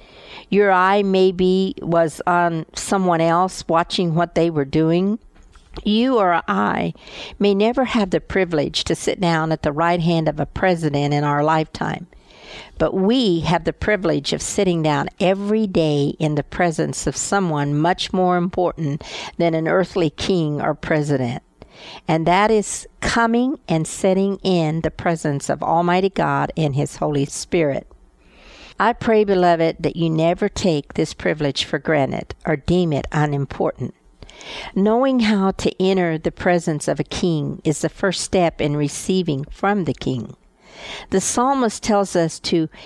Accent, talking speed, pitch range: American, 155 wpm, 155-195 Hz